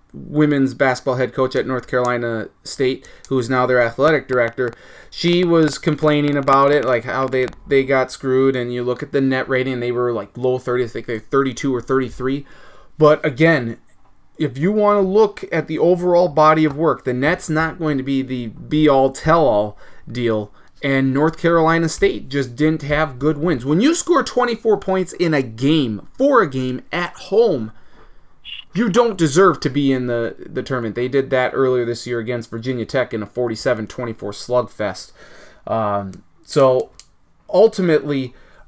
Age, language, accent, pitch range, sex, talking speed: 30-49, English, American, 125-160 Hz, male, 180 wpm